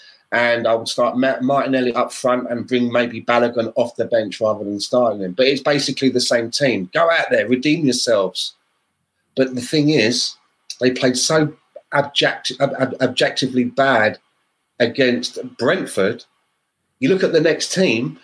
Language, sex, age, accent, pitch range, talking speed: English, male, 30-49, British, 125-145 Hz, 150 wpm